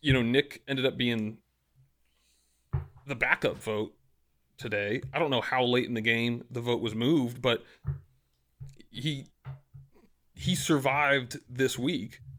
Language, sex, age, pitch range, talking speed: English, male, 30-49, 115-140 Hz, 135 wpm